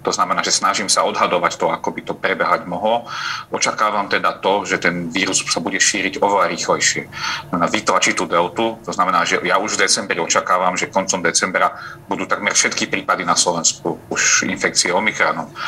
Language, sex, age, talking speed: Slovak, male, 40-59, 175 wpm